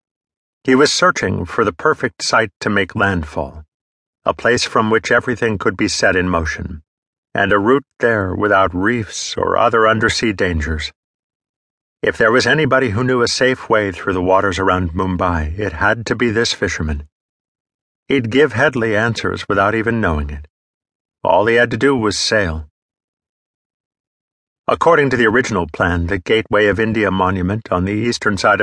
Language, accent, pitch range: English, American, 90-115 Hz